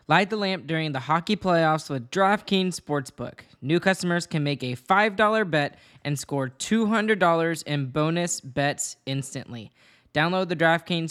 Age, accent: 10-29, American